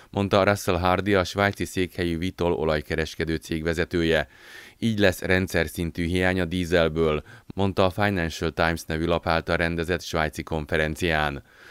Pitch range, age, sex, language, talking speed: 80-95 Hz, 30-49, male, Hungarian, 140 wpm